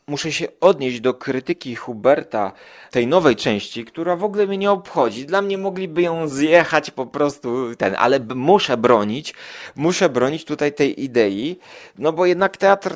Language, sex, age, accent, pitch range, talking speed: Polish, male, 30-49, native, 120-170 Hz, 160 wpm